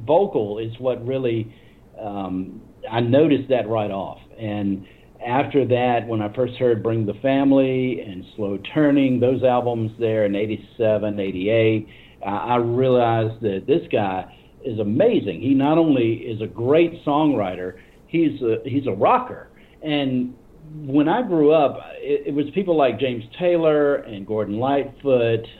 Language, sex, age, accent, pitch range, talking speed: English, male, 50-69, American, 110-140 Hz, 145 wpm